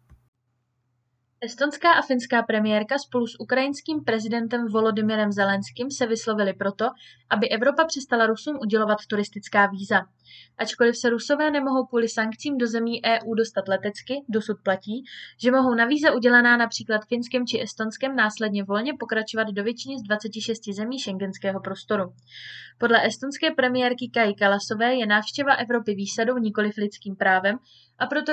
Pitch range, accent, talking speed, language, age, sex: 205-250 Hz, native, 140 wpm, Czech, 20-39, female